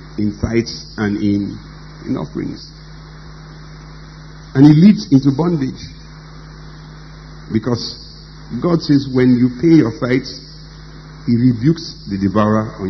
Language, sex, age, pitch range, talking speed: English, male, 50-69, 115-155 Hz, 110 wpm